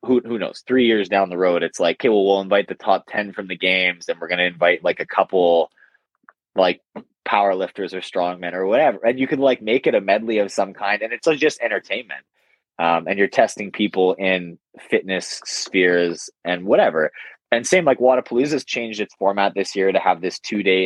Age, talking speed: 20-39, 205 wpm